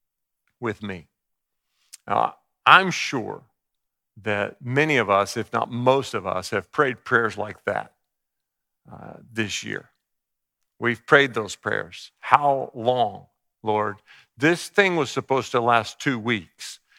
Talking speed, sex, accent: 130 wpm, male, American